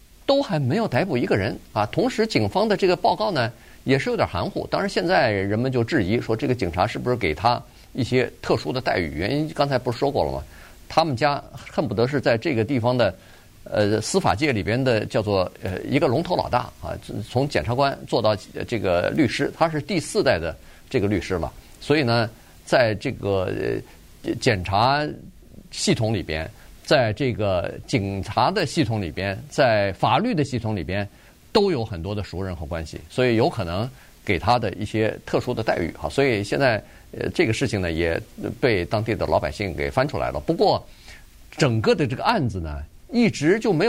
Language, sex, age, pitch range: Chinese, male, 50-69, 95-135 Hz